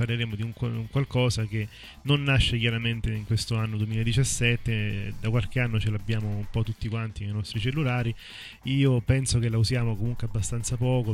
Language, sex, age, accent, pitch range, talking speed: Italian, male, 20-39, native, 105-120 Hz, 170 wpm